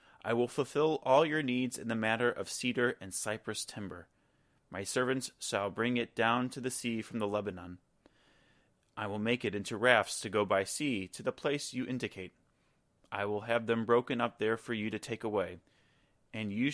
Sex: male